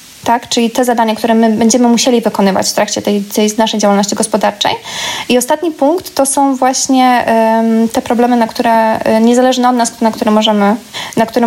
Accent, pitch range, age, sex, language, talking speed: native, 220-245 Hz, 20-39, female, Polish, 160 wpm